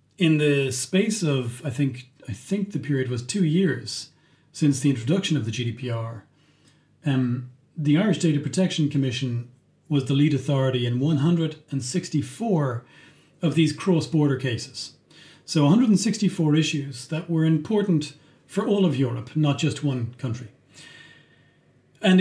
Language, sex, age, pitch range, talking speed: English, male, 40-59, 135-160 Hz, 135 wpm